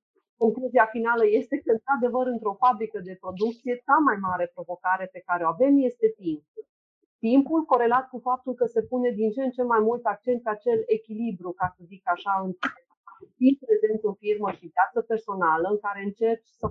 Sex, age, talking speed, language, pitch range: female, 40-59, 185 wpm, Romanian, 195-245 Hz